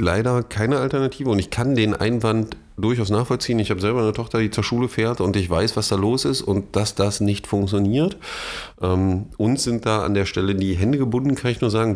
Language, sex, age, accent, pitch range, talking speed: German, male, 30-49, German, 90-115 Hz, 225 wpm